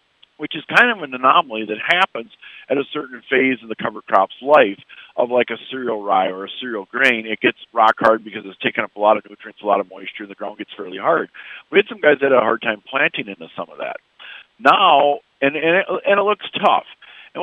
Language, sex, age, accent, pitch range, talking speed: English, male, 50-69, American, 115-140 Hz, 245 wpm